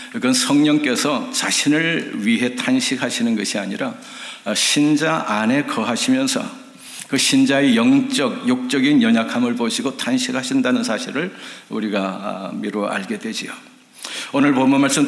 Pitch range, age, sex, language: 160-265 Hz, 60-79, male, Korean